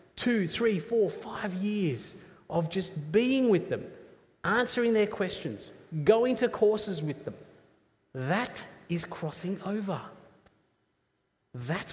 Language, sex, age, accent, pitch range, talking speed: English, male, 30-49, Australian, 130-205 Hz, 115 wpm